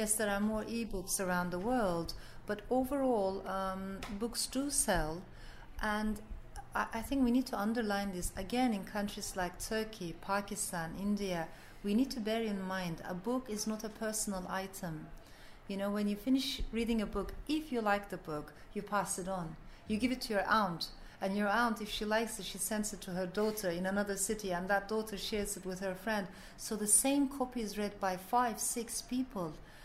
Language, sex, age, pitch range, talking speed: English, female, 40-59, 185-230 Hz, 200 wpm